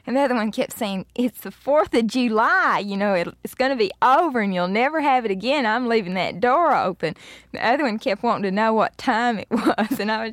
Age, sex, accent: 20-39, female, American